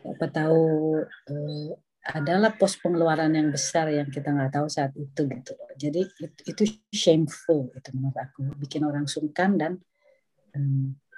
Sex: female